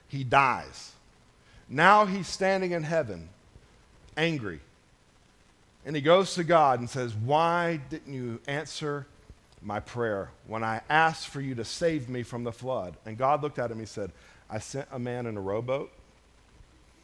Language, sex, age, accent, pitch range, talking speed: English, male, 50-69, American, 110-145 Hz, 160 wpm